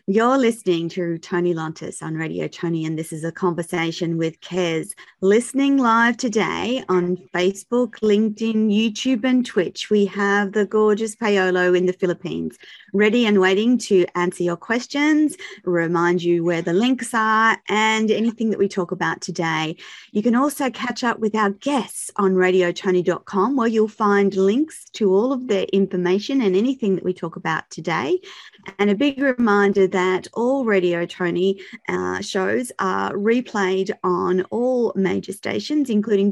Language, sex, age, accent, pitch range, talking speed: English, female, 30-49, Australian, 185-230 Hz, 160 wpm